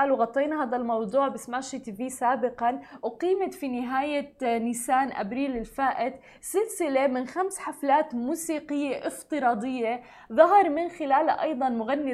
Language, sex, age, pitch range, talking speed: Arabic, female, 20-39, 240-290 Hz, 115 wpm